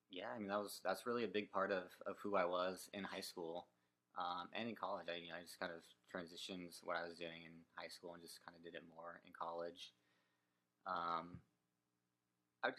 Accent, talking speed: American, 230 wpm